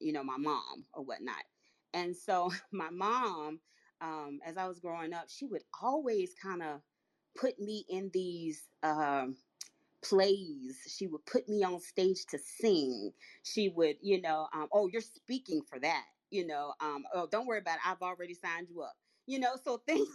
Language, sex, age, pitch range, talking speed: English, female, 30-49, 155-210 Hz, 190 wpm